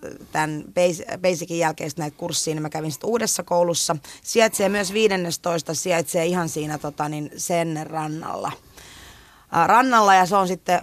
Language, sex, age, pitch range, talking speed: Finnish, female, 30-49, 155-190 Hz, 145 wpm